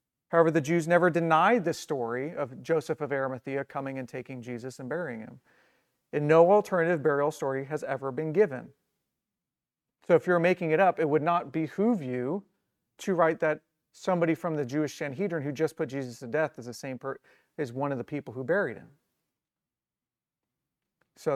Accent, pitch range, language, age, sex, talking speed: American, 140-170 Hz, English, 40-59, male, 185 wpm